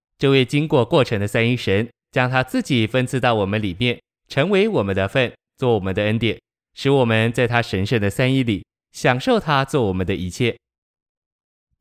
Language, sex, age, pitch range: Chinese, male, 20-39, 110-135 Hz